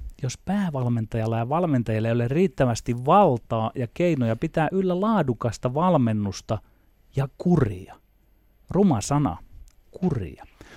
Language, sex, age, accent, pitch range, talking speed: Finnish, male, 30-49, native, 110-155 Hz, 105 wpm